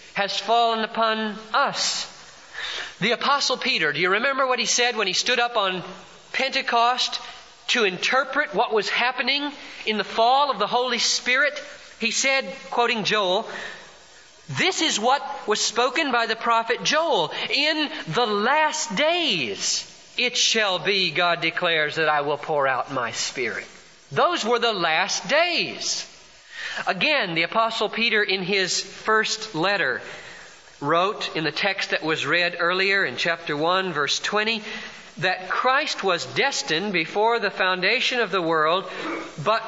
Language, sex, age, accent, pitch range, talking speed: English, male, 40-59, American, 195-265 Hz, 145 wpm